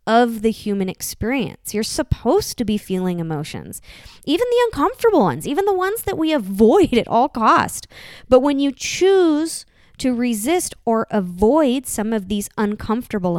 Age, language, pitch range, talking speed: 20-39, English, 205-265 Hz, 155 wpm